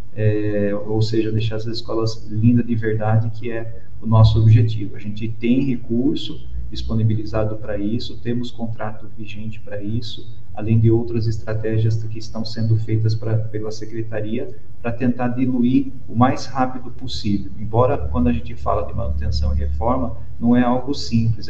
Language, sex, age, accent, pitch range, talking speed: Portuguese, male, 40-59, Brazilian, 110-115 Hz, 160 wpm